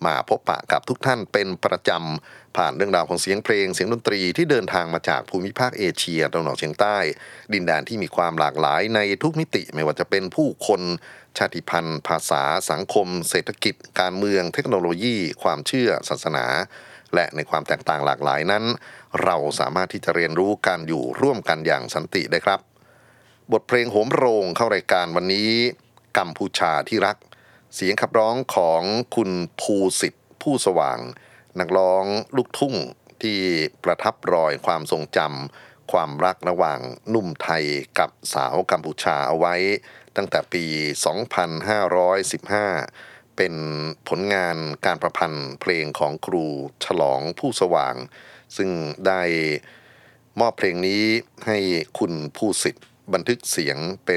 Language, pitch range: Thai, 80-100 Hz